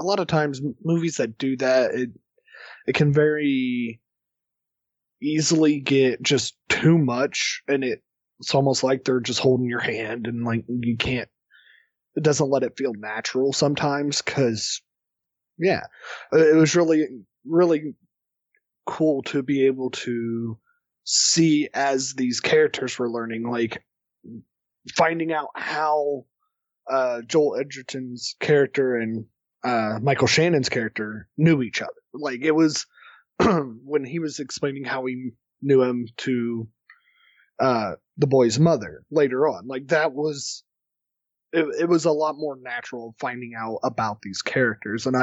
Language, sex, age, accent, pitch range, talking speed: English, male, 20-39, American, 120-150 Hz, 140 wpm